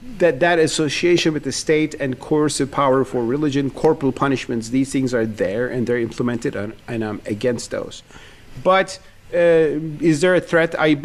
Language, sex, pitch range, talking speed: English, male, 115-150 Hz, 165 wpm